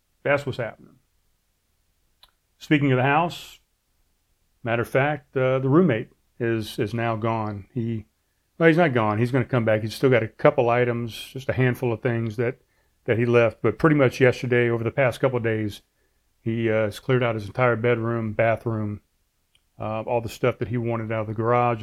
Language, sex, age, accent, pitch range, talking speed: English, male, 40-59, American, 110-130 Hz, 200 wpm